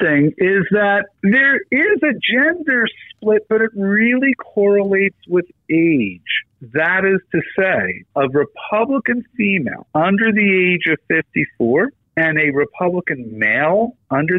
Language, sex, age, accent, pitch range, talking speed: English, male, 50-69, American, 145-200 Hz, 125 wpm